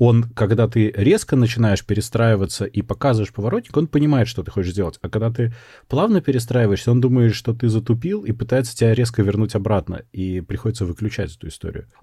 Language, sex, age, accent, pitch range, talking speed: Russian, male, 30-49, native, 95-115 Hz, 180 wpm